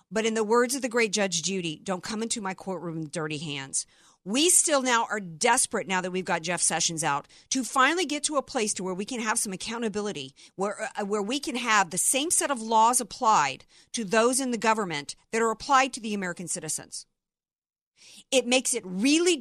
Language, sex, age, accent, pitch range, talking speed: English, female, 50-69, American, 200-270 Hz, 215 wpm